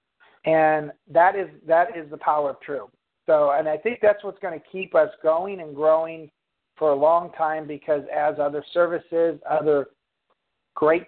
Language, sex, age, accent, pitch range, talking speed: English, male, 50-69, American, 145-170 Hz, 175 wpm